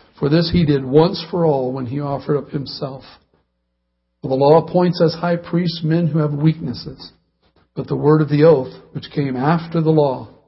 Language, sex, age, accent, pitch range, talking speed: English, male, 60-79, American, 130-160 Hz, 195 wpm